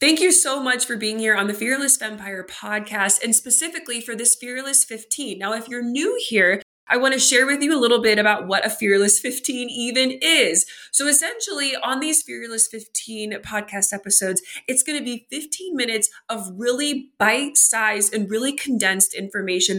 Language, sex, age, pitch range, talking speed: English, female, 20-39, 210-275 Hz, 185 wpm